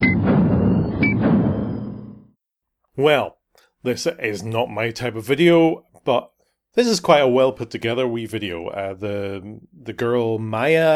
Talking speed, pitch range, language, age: 125 wpm, 110-140 Hz, English, 30-49